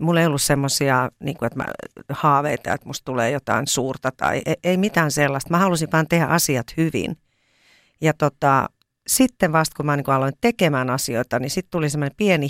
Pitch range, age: 130-160 Hz, 40-59